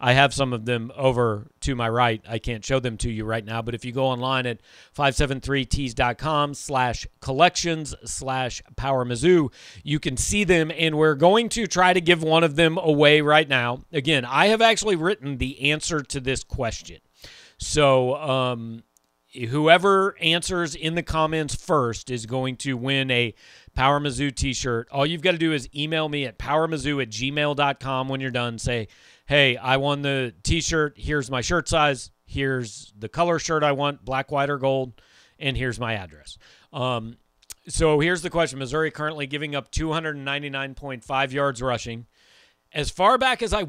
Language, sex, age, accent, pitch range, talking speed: English, male, 40-59, American, 120-155 Hz, 175 wpm